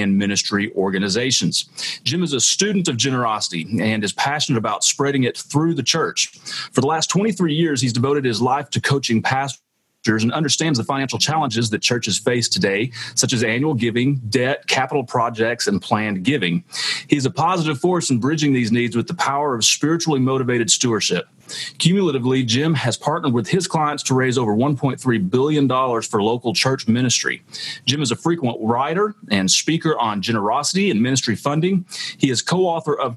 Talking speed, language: 175 wpm, English